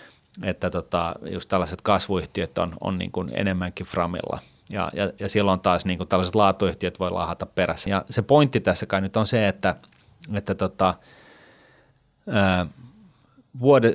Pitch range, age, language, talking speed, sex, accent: 95-110 Hz, 30-49, Finnish, 145 wpm, male, native